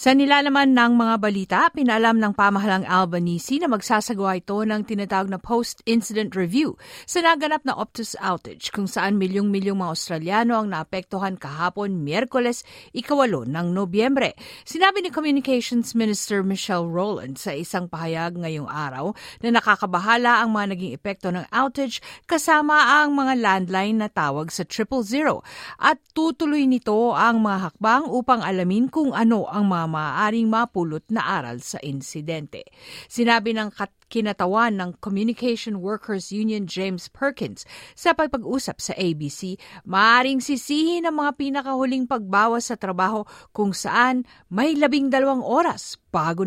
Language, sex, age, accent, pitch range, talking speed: Filipino, female, 50-69, native, 160-235 Hz, 140 wpm